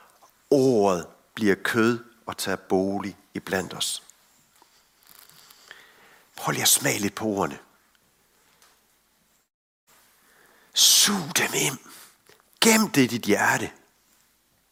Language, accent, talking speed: Danish, native, 90 wpm